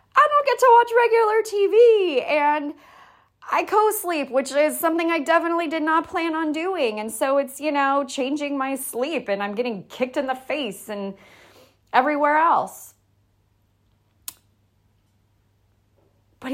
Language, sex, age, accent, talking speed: English, female, 30-49, American, 140 wpm